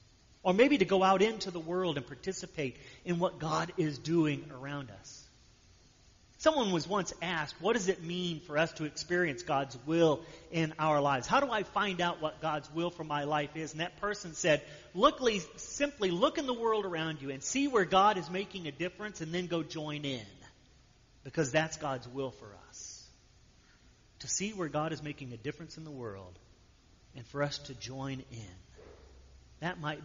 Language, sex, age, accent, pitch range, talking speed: English, male, 40-59, American, 130-170 Hz, 190 wpm